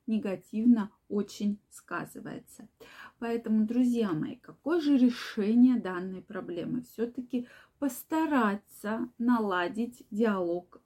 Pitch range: 200-245 Hz